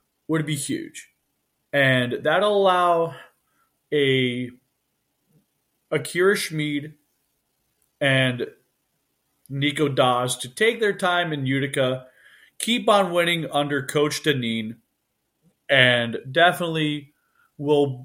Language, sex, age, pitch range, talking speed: English, male, 30-49, 135-175 Hz, 95 wpm